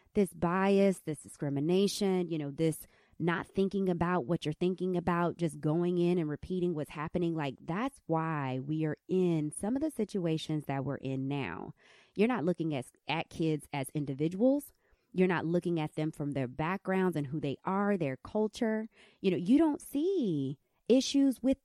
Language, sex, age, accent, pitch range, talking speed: English, female, 20-39, American, 155-235 Hz, 175 wpm